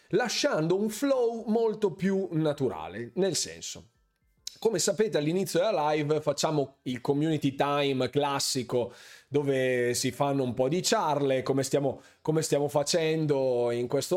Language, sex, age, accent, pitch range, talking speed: Italian, male, 30-49, native, 130-180 Hz, 135 wpm